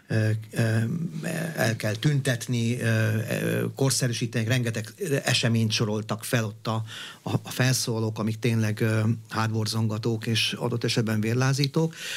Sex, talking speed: male, 90 wpm